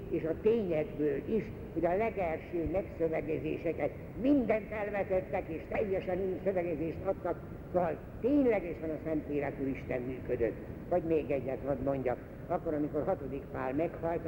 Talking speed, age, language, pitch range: 135 wpm, 60-79, Hungarian, 145-195 Hz